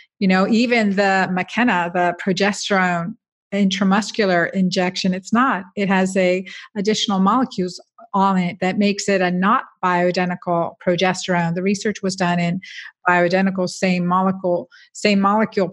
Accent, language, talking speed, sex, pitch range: American, English, 135 wpm, female, 175-200 Hz